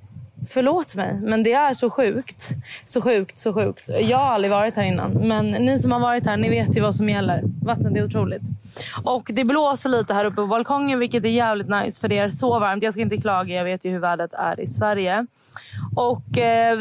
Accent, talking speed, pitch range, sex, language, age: native, 225 wpm, 180-240 Hz, female, Swedish, 20-39